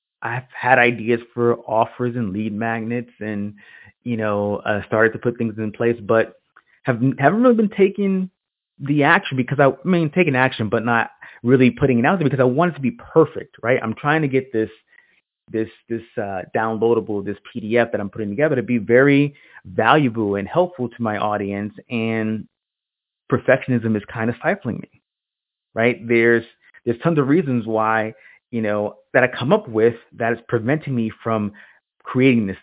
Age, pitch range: 30-49, 110-130 Hz